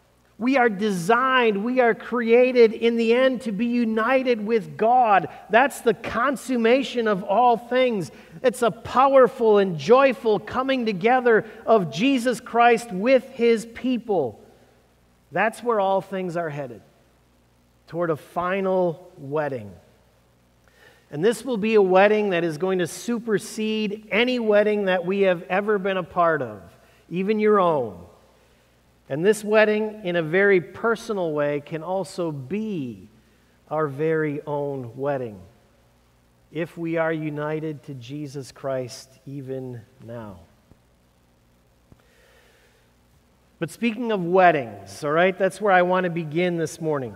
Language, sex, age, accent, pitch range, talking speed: English, male, 50-69, American, 145-220 Hz, 135 wpm